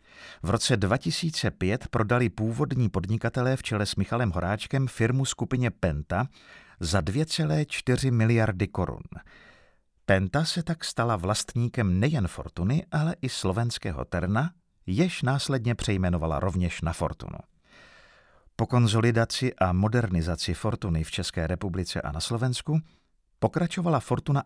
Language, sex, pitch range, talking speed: Czech, male, 90-130 Hz, 120 wpm